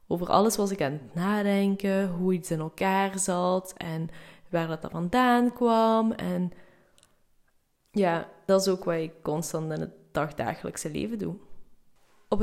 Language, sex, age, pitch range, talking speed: Dutch, female, 20-39, 170-210 Hz, 150 wpm